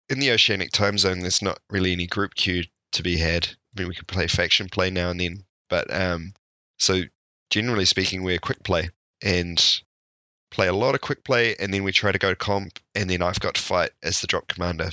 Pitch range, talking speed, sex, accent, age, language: 90-105 Hz, 230 wpm, male, Australian, 20-39, English